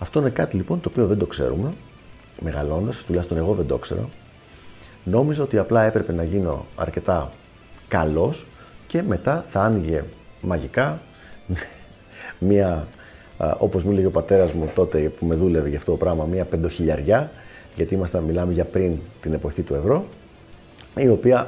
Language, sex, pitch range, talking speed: Greek, male, 80-105 Hz, 150 wpm